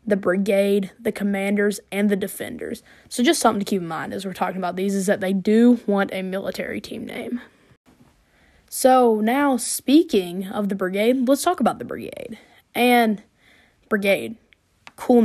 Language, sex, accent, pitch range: English, female, American, 190-225 Hz